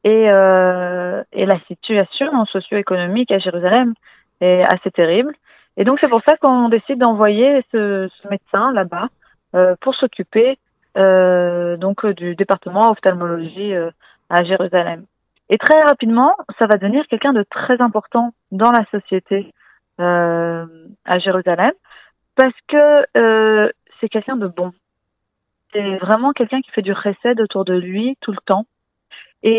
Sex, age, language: female, 30-49, French